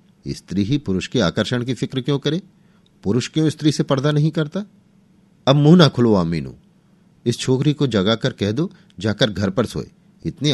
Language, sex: Hindi, male